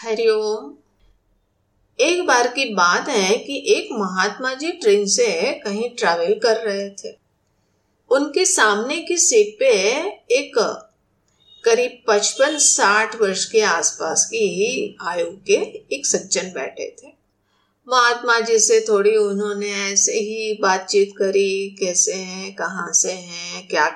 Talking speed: 130 wpm